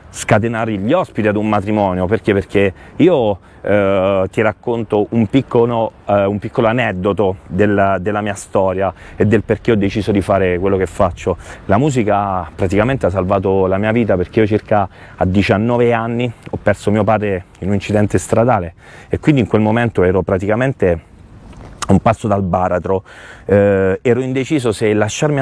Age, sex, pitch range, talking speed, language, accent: 30-49, male, 95-115 Hz, 165 wpm, Italian, native